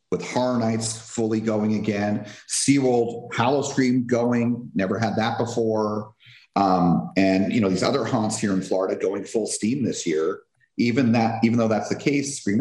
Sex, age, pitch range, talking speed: male, 40-59, 95-120 Hz, 175 wpm